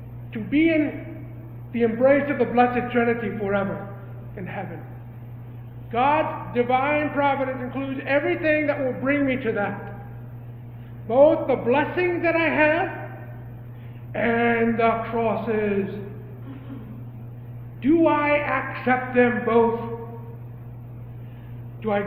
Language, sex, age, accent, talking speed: English, male, 50-69, American, 105 wpm